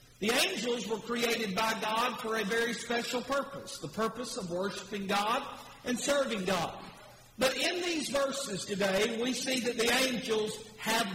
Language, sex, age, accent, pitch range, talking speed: English, male, 50-69, American, 190-240 Hz, 160 wpm